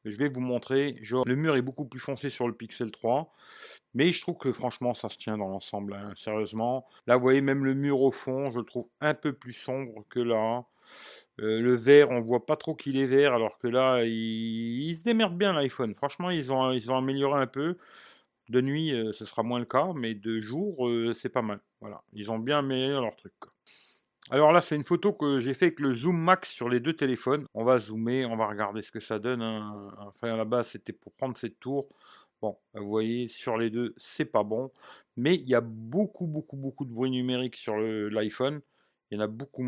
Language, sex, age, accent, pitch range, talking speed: French, male, 40-59, French, 115-140 Hz, 240 wpm